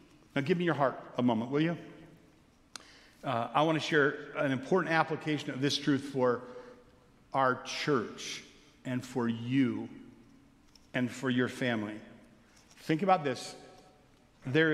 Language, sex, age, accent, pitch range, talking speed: English, male, 50-69, American, 140-195 Hz, 140 wpm